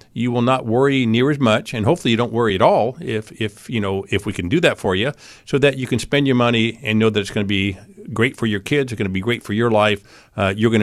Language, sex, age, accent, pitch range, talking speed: English, male, 50-69, American, 105-130 Hz, 300 wpm